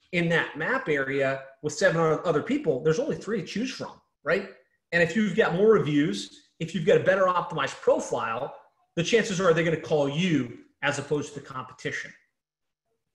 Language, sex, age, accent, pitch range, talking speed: English, male, 30-49, American, 145-190 Hz, 185 wpm